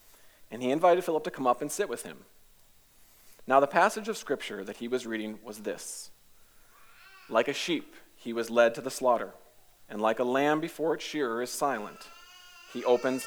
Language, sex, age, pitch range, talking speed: English, male, 40-59, 115-170 Hz, 190 wpm